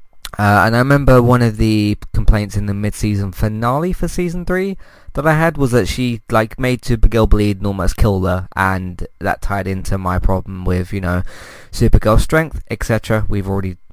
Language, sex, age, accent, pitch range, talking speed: English, male, 20-39, British, 95-115 Hz, 185 wpm